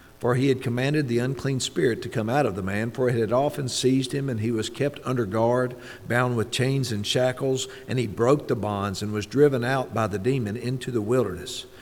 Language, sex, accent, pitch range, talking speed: English, male, American, 105-130 Hz, 230 wpm